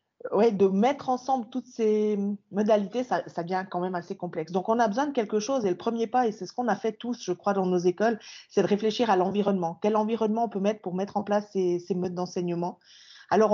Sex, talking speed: female, 250 wpm